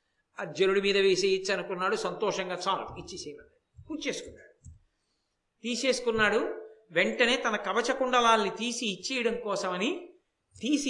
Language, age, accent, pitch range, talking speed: Telugu, 50-69, native, 220-300 Hz, 95 wpm